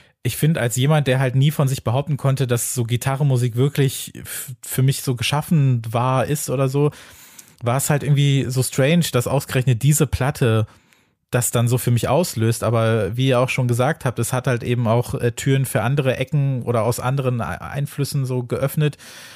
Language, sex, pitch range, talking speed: German, male, 120-140 Hz, 190 wpm